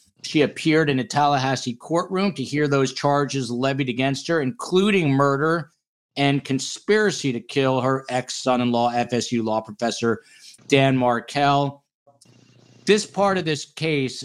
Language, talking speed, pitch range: English, 130 wpm, 120-145 Hz